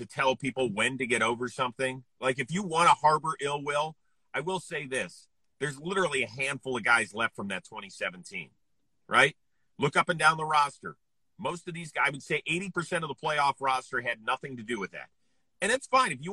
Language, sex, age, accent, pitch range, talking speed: English, male, 40-59, American, 130-180 Hz, 220 wpm